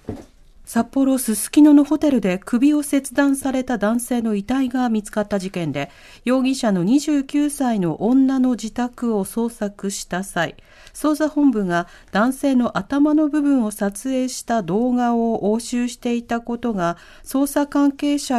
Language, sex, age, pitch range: Japanese, female, 40-59, 195-275 Hz